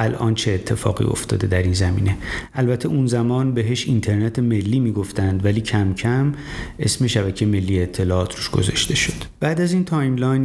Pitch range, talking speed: 105-125 Hz, 160 wpm